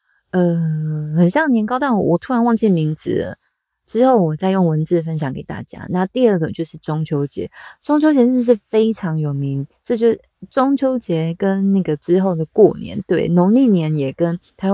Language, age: Chinese, 20-39